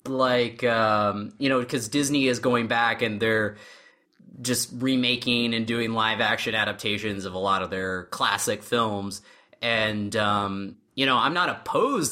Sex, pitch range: male, 110-140 Hz